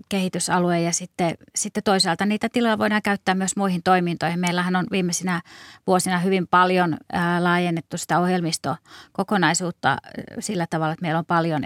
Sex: female